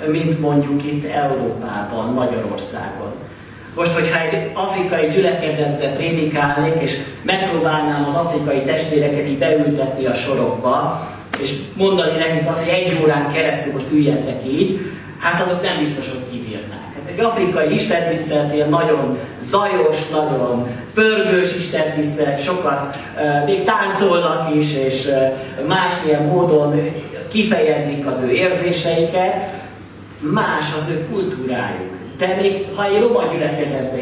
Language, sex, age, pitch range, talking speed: Hungarian, male, 30-49, 130-175 Hz, 120 wpm